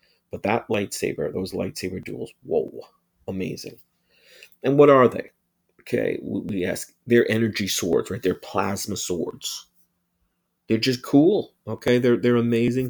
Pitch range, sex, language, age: 105-135 Hz, male, English, 40-59